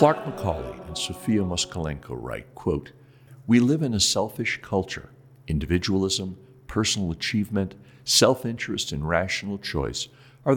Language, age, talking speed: English, 60-79, 120 wpm